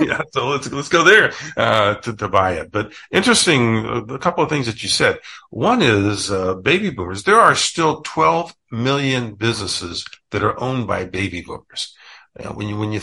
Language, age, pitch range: English, 50-69, 95-120 Hz